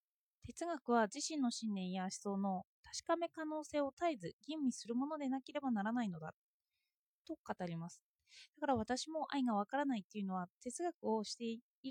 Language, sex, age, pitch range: Japanese, female, 20-39, 205-305 Hz